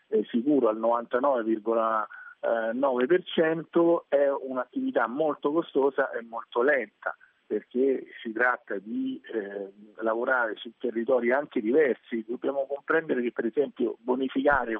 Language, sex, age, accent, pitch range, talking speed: Italian, male, 50-69, native, 120-160 Hz, 110 wpm